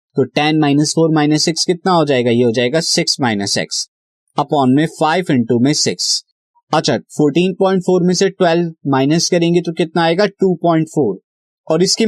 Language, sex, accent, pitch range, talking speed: Hindi, male, native, 135-175 Hz, 190 wpm